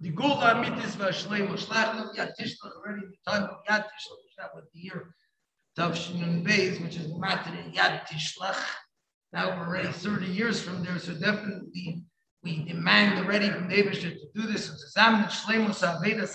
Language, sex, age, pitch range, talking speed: English, male, 50-69, 180-220 Hz, 105 wpm